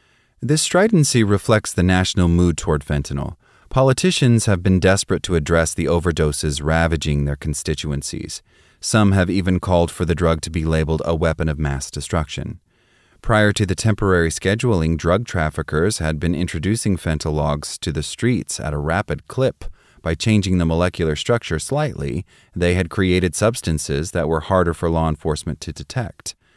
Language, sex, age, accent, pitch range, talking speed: English, male, 30-49, American, 80-100 Hz, 160 wpm